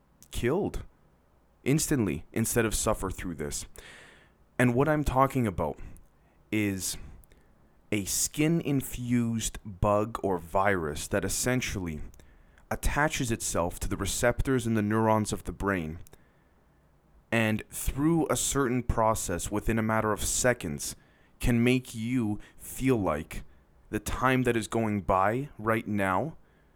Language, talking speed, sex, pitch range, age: English, 125 wpm, male, 90-115 Hz, 30-49